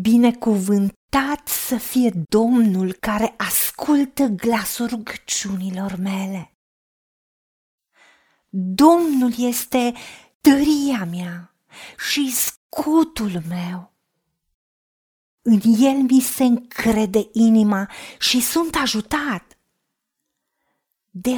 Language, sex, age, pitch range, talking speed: Romanian, female, 30-49, 210-295 Hz, 75 wpm